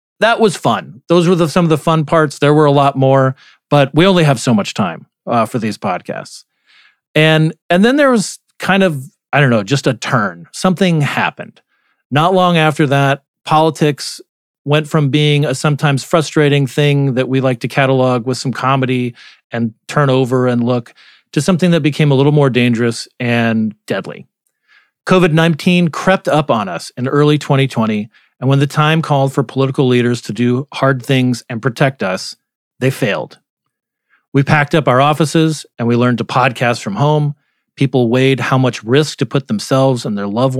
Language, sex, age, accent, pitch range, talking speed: English, male, 40-59, American, 125-155 Hz, 185 wpm